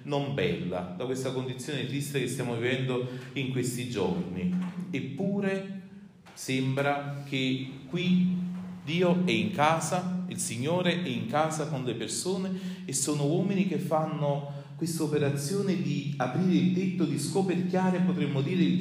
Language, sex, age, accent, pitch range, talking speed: Italian, male, 40-59, native, 125-170 Hz, 140 wpm